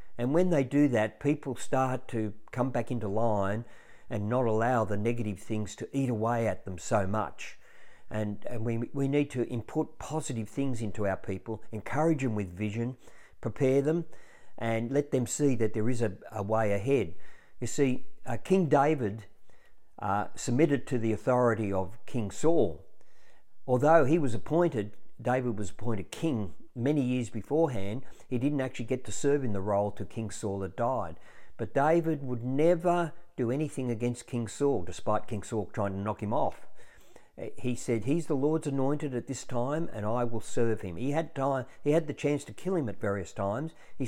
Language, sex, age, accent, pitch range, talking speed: English, male, 50-69, Australian, 105-140 Hz, 185 wpm